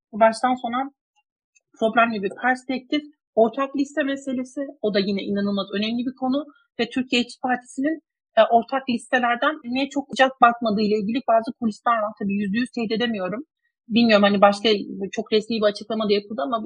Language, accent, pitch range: Turkish, native, 200-250 Hz